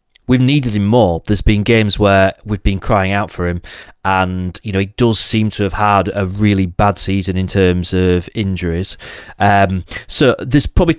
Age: 30-49